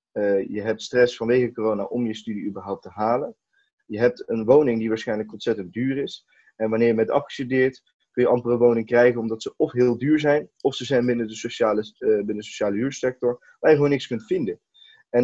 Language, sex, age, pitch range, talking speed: Dutch, male, 20-39, 115-140 Hz, 210 wpm